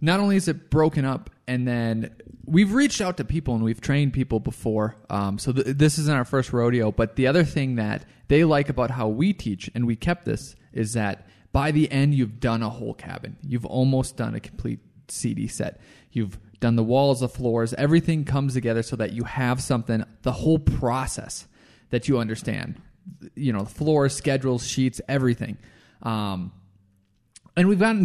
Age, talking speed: 20-39, 190 wpm